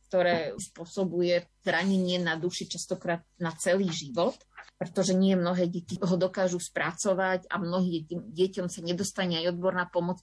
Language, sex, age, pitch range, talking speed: Slovak, female, 30-49, 170-195 Hz, 140 wpm